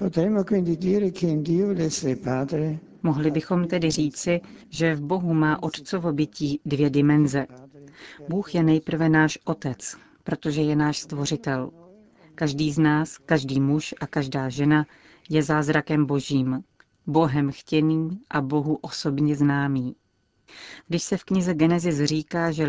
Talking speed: 120 wpm